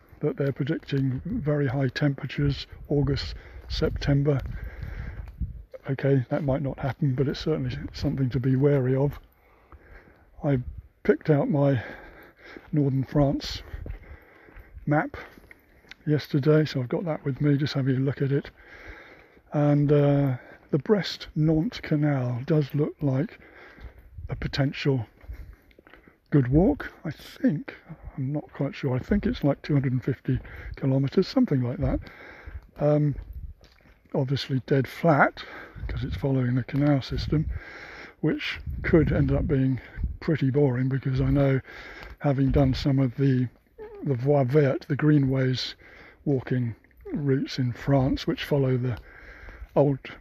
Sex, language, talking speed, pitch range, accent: male, English, 130 wpm, 130-145 Hz, British